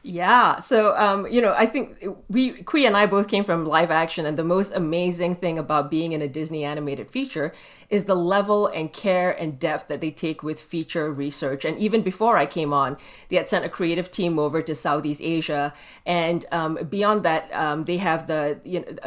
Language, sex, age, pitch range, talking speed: English, female, 30-49, 155-195 Hz, 210 wpm